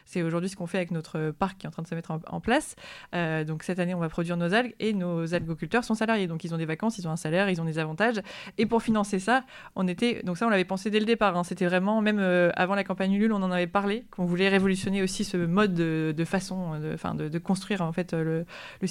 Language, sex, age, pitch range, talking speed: French, female, 20-39, 170-200 Hz, 280 wpm